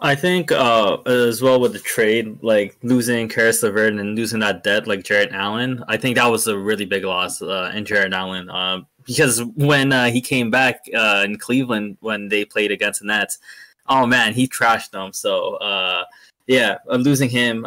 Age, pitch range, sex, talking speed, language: 20-39, 110-140 Hz, male, 195 wpm, English